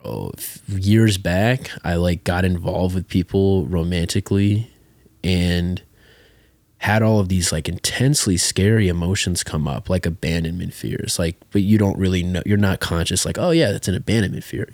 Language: English